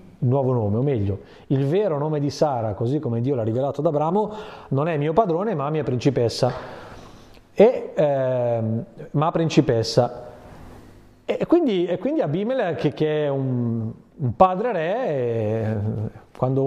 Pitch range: 115-170 Hz